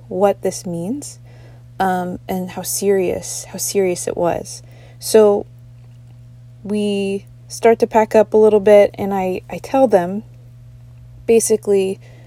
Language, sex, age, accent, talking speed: English, female, 20-39, American, 125 wpm